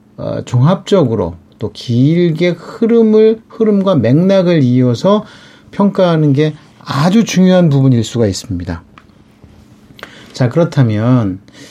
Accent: Korean